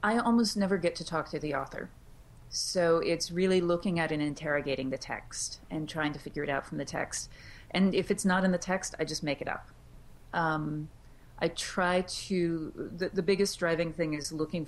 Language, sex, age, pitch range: English, female, 30-49, 150-185 Hz